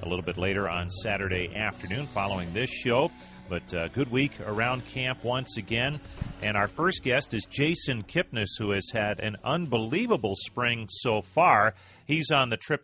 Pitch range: 100-125 Hz